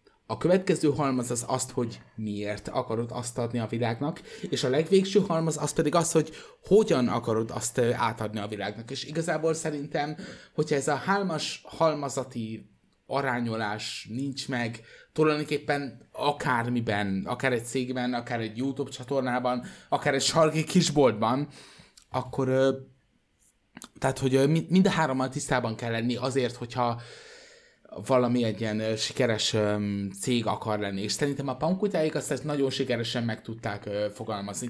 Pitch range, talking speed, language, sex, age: 115-145 Hz, 135 wpm, Hungarian, male, 20-39